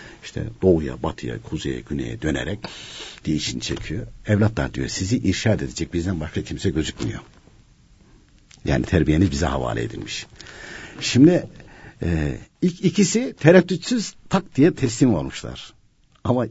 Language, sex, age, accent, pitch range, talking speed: Turkish, male, 60-79, native, 90-145 Hz, 115 wpm